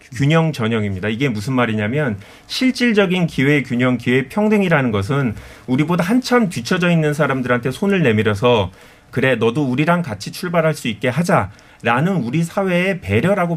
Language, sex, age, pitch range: Korean, male, 30-49, 120-170 Hz